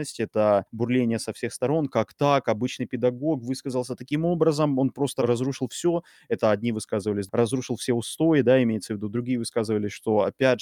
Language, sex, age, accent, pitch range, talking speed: Russian, male, 20-39, native, 110-130 Hz, 170 wpm